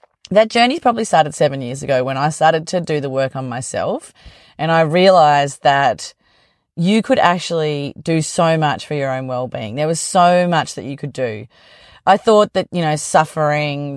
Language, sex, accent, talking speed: English, female, Australian, 190 wpm